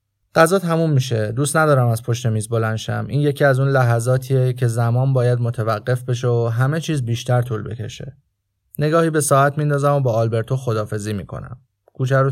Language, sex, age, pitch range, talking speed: Persian, male, 30-49, 115-135 Hz, 175 wpm